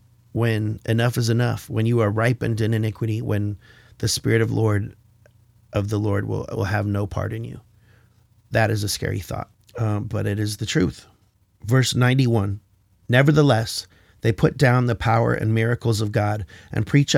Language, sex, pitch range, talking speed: English, male, 105-120 Hz, 175 wpm